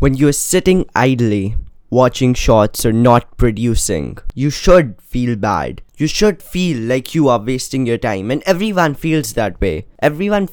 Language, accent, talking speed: English, Indian, 165 wpm